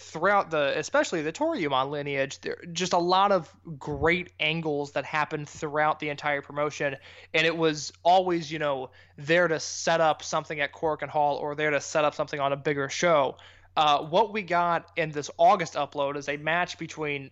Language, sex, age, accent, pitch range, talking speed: English, male, 20-39, American, 145-180 Hz, 195 wpm